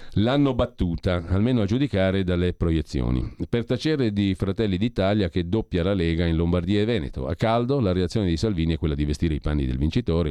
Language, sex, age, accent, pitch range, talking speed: Italian, male, 40-59, native, 85-115 Hz, 200 wpm